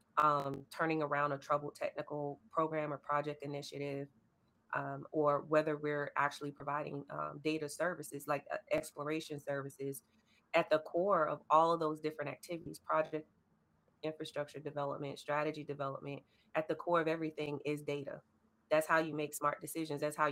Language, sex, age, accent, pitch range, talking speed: English, female, 30-49, American, 140-155 Hz, 155 wpm